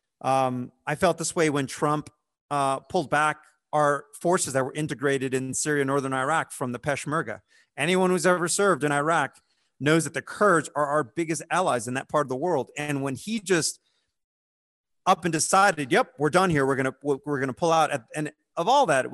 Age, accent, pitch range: 30-49, American, 125-155 Hz